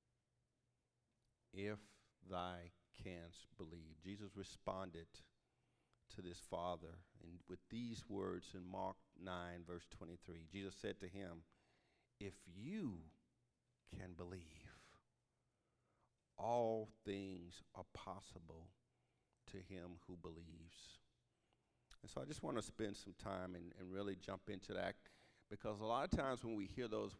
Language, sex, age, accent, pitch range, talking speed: English, male, 50-69, American, 90-115 Hz, 130 wpm